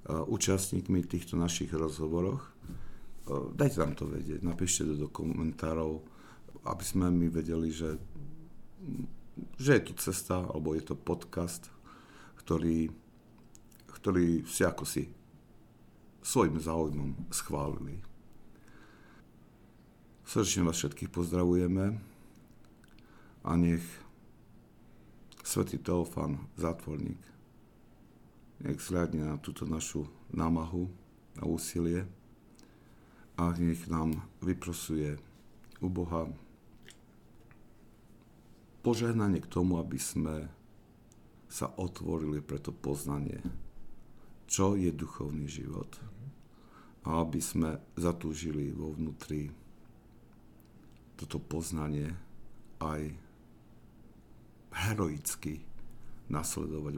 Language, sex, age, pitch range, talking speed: Slovak, male, 50-69, 80-95 Hz, 85 wpm